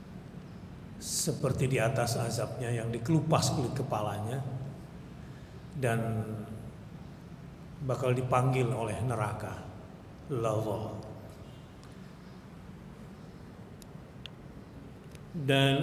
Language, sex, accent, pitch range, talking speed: Indonesian, male, native, 115-145 Hz, 55 wpm